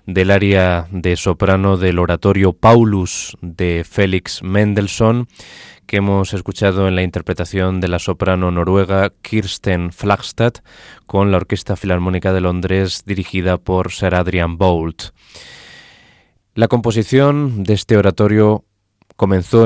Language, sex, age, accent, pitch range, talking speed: Spanish, male, 20-39, Spanish, 90-115 Hz, 120 wpm